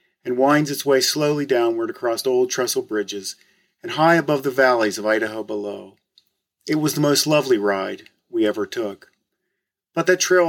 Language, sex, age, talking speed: English, male, 40-59, 170 wpm